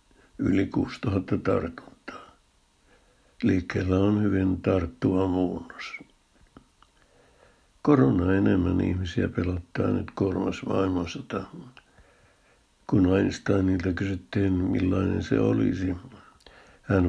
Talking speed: 80 wpm